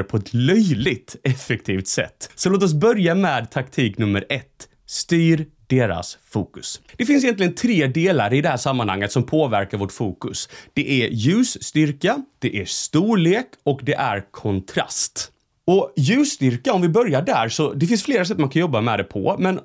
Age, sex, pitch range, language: 30-49, male, 115-175 Hz, Swedish